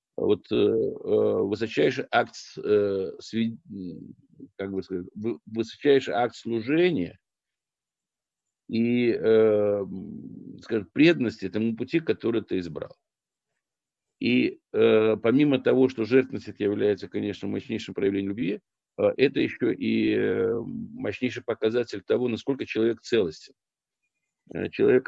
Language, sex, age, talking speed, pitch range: Russian, male, 50-69, 90 wpm, 100-135 Hz